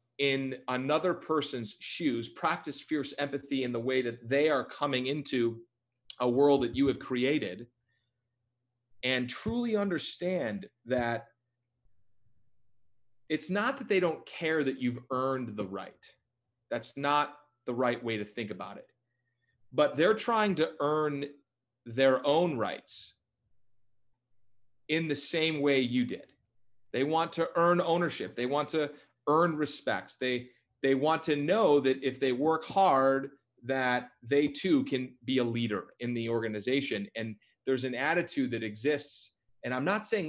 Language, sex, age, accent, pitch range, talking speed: English, male, 30-49, American, 120-145 Hz, 145 wpm